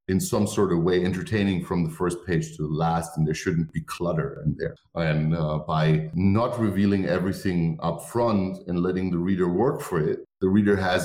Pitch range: 90-115 Hz